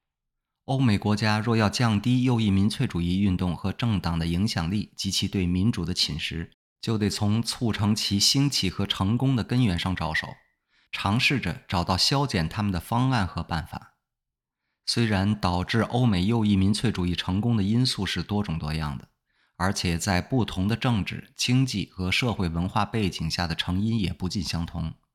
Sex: male